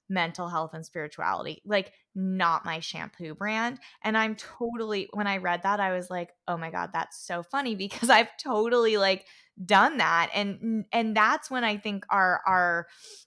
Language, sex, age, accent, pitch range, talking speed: English, female, 20-39, American, 180-215 Hz, 175 wpm